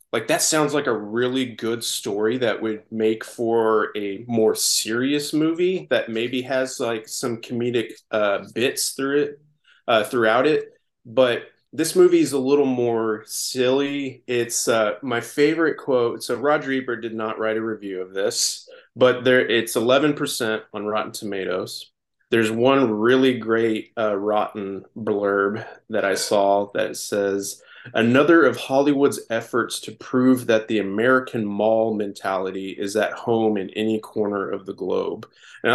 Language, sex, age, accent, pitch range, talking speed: English, male, 20-39, American, 110-130 Hz, 155 wpm